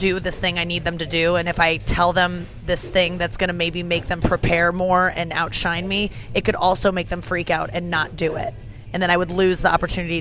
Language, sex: English, female